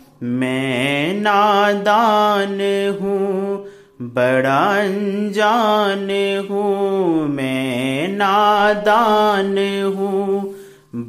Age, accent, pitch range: 30-49, native, 195-210 Hz